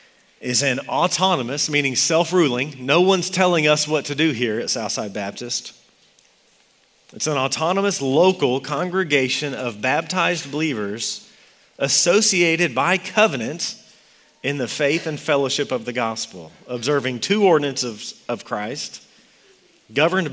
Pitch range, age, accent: 120-160 Hz, 40-59, American